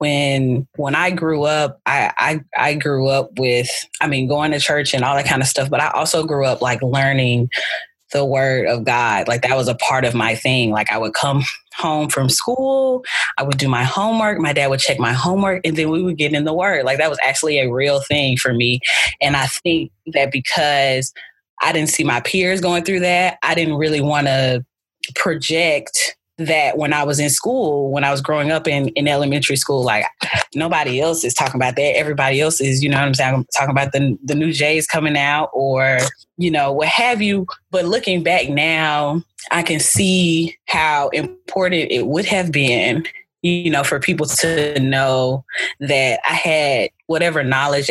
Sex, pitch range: female, 135-165 Hz